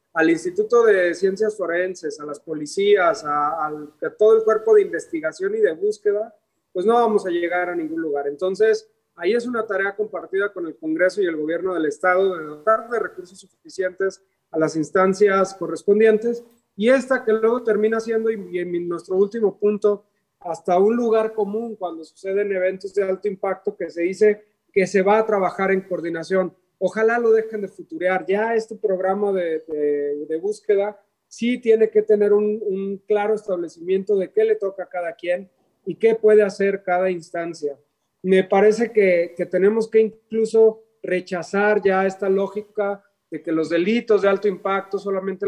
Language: Spanish